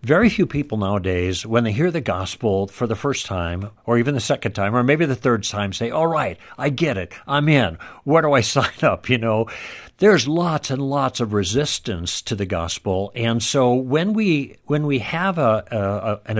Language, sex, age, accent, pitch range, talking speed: English, male, 60-79, American, 105-145 Hz, 210 wpm